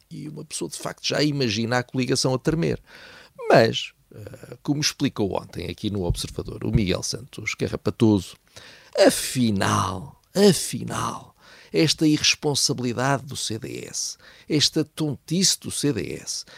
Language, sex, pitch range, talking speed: Portuguese, male, 100-140 Hz, 115 wpm